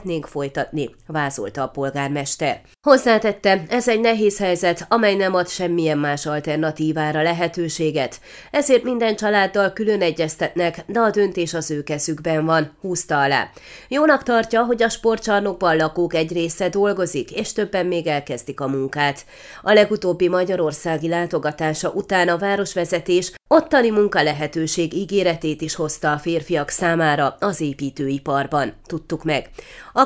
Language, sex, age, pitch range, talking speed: Hungarian, female, 30-49, 155-205 Hz, 130 wpm